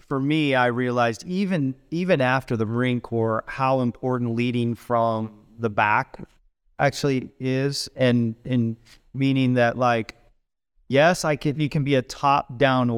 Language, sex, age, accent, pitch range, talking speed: English, male, 30-49, American, 120-145 Hz, 150 wpm